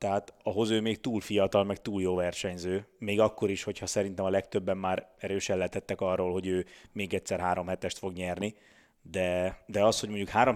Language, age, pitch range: Hungarian, 30-49, 95-115 Hz